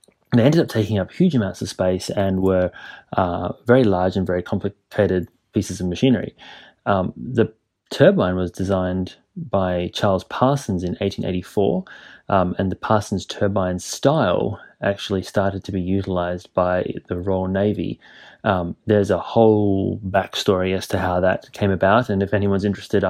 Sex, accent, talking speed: male, Australian, 155 wpm